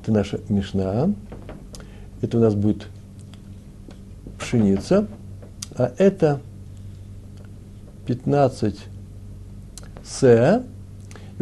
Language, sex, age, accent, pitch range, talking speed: Russian, male, 60-79, native, 100-125 Hz, 65 wpm